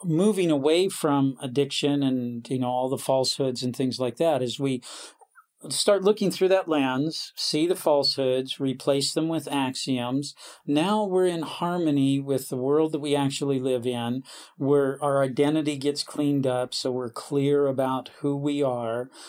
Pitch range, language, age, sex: 135-165 Hz, English, 40-59, male